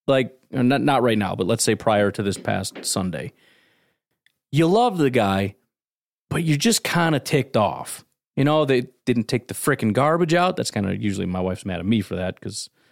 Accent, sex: American, male